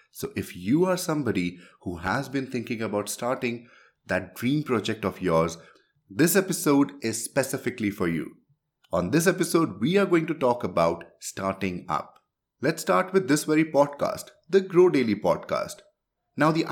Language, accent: English, Indian